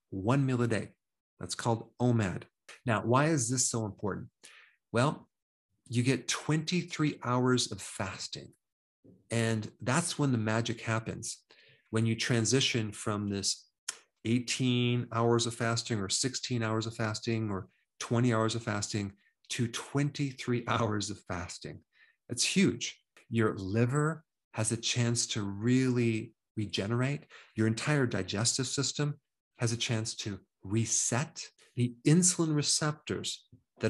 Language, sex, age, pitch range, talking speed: English, male, 40-59, 110-135 Hz, 130 wpm